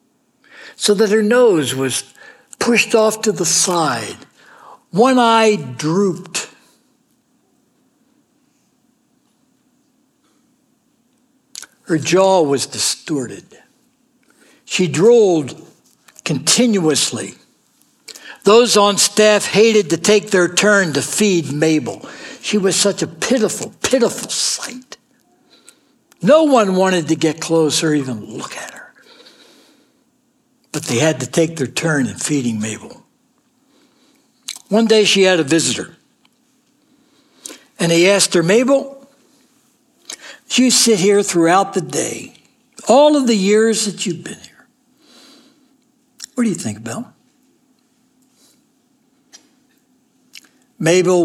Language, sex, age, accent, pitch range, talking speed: English, male, 60-79, American, 175-260 Hz, 105 wpm